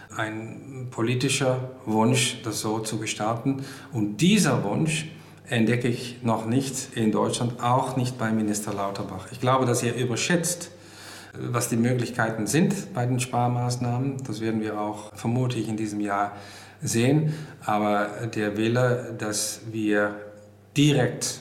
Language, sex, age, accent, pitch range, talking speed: German, male, 50-69, German, 105-125 Hz, 135 wpm